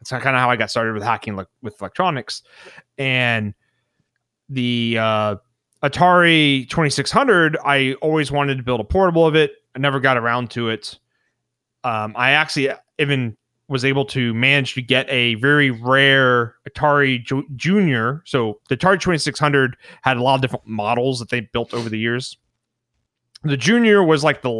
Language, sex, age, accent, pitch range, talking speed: English, male, 30-49, American, 120-150 Hz, 165 wpm